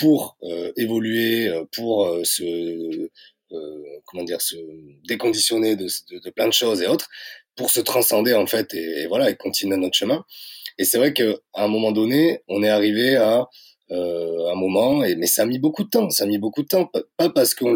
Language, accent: French, French